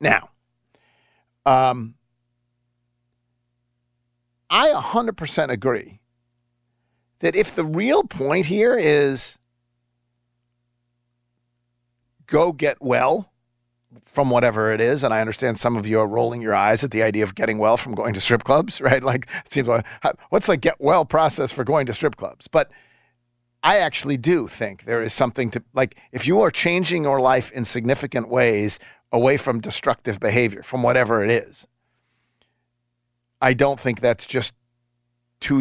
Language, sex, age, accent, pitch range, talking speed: English, male, 50-69, American, 120-135 Hz, 145 wpm